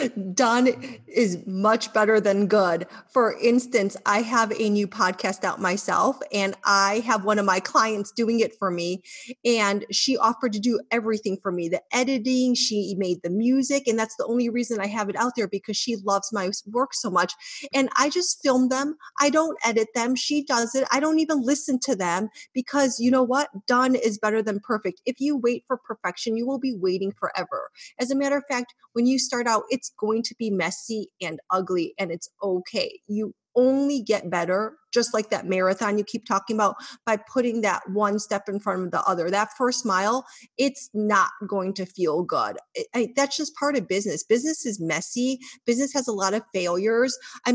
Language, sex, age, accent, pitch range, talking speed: English, female, 30-49, American, 200-255 Hz, 200 wpm